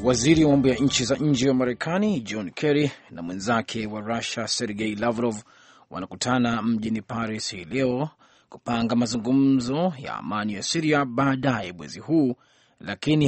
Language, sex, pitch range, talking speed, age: Swahili, male, 120-150 Hz, 145 wpm, 30-49